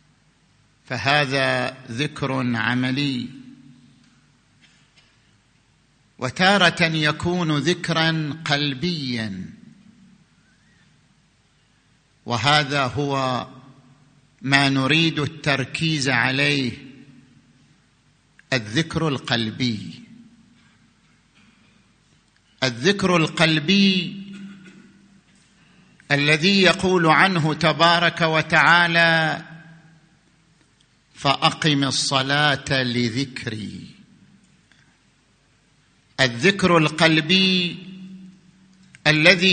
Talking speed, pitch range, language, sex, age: 45 wpm, 140-185 Hz, Arabic, male, 50-69